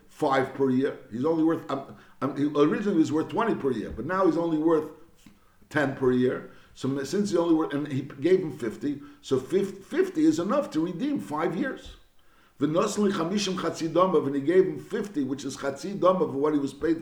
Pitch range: 140-190 Hz